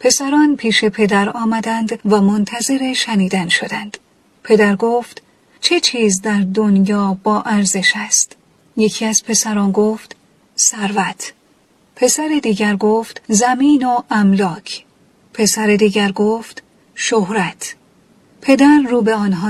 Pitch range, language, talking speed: 210-235 Hz, Persian, 110 wpm